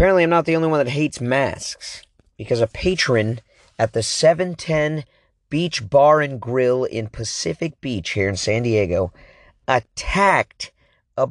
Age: 40-59